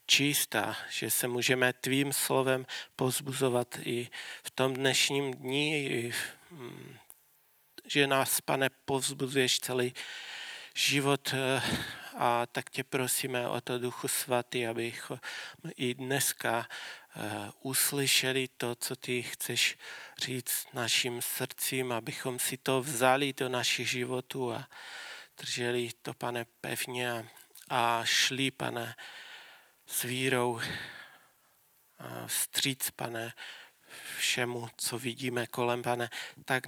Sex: male